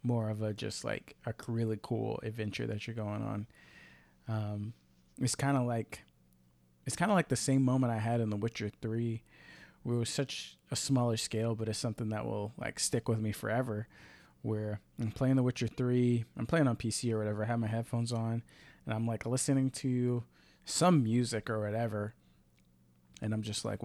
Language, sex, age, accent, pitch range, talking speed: English, male, 20-39, American, 105-130 Hz, 195 wpm